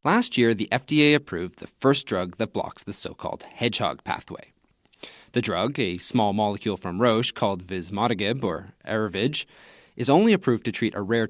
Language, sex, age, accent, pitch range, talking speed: English, male, 30-49, American, 100-135 Hz, 170 wpm